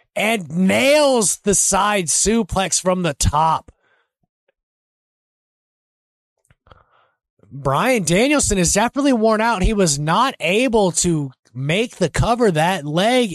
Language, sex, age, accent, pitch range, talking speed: English, male, 20-39, American, 145-195 Hz, 110 wpm